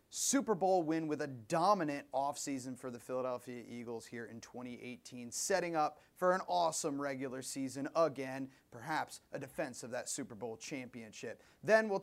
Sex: male